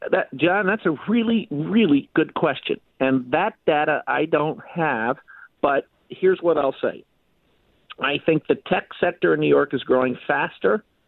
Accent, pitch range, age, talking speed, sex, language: American, 135-170 Hz, 50-69, 160 wpm, male, English